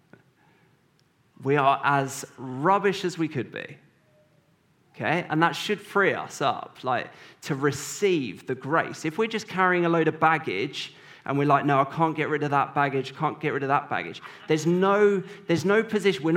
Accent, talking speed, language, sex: British, 185 wpm, English, male